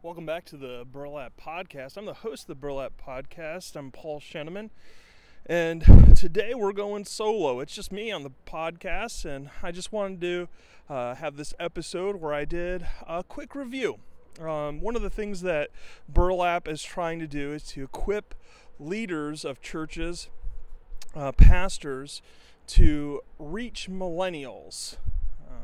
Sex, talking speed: male, 150 wpm